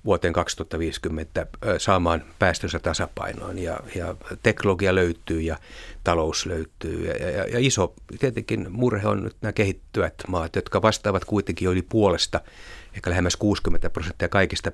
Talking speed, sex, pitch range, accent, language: 135 wpm, male, 85-105 Hz, native, Finnish